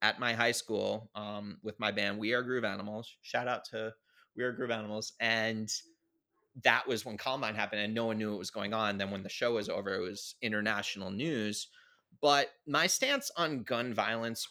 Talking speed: 205 wpm